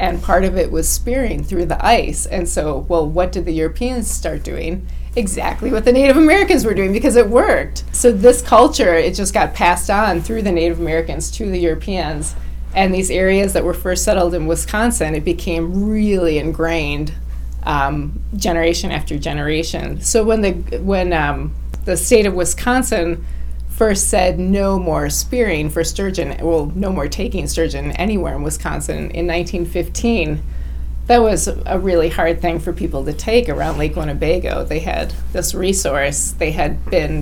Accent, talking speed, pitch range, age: American, 170 wpm, 160-210 Hz, 20-39